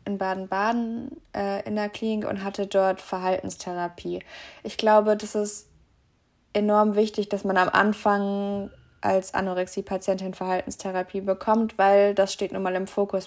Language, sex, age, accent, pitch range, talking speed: German, female, 20-39, German, 185-205 Hz, 140 wpm